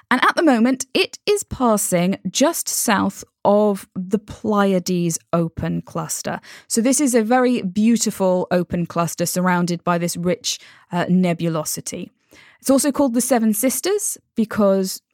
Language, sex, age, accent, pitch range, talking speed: English, female, 20-39, British, 170-235 Hz, 140 wpm